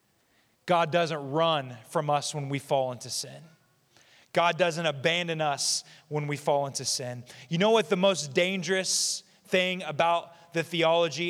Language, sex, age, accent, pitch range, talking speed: English, male, 30-49, American, 140-185 Hz, 155 wpm